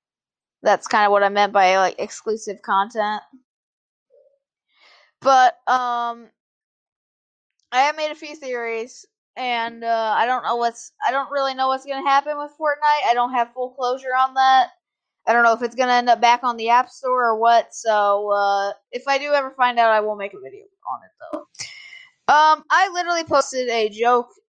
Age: 20-39